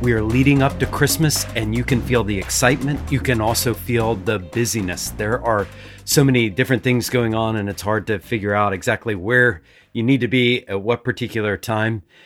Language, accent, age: English, American, 40-59